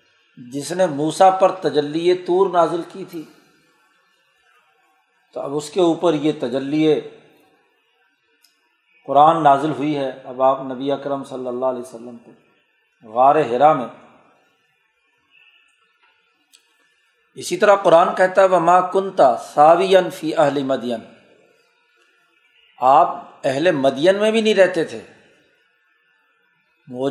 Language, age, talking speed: Urdu, 50-69, 115 wpm